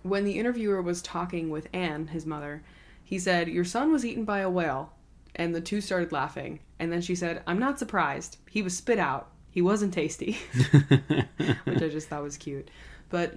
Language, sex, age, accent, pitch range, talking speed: English, female, 20-39, American, 155-190 Hz, 200 wpm